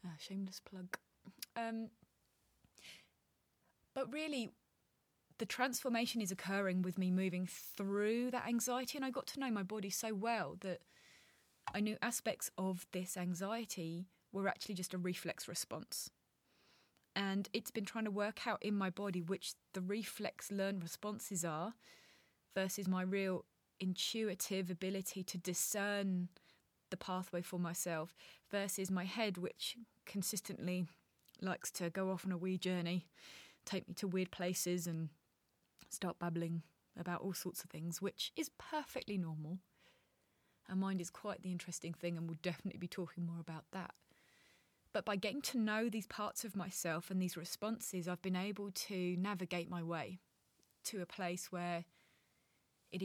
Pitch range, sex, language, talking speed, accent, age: 175-205 Hz, female, English, 150 wpm, British, 20-39